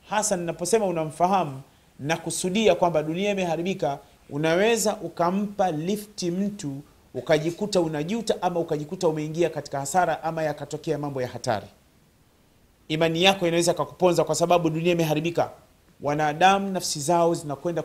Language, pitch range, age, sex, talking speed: Swahili, 155-200 Hz, 40-59, male, 120 wpm